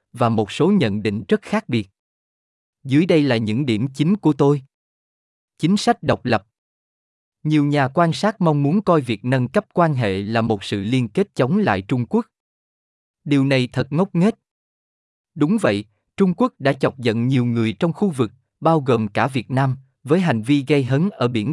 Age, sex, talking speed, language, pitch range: 20-39, male, 195 wpm, Vietnamese, 115-165 Hz